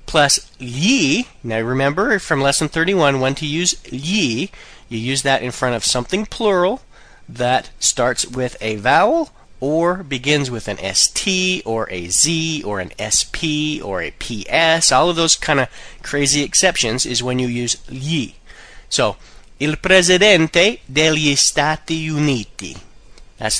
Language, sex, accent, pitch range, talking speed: Italian, male, American, 120-165 Hz, 145 wpm